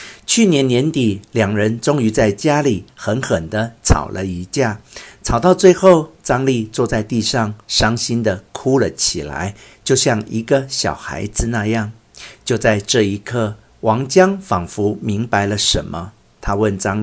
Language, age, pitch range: Chinese, 50-69, 100-135 Hz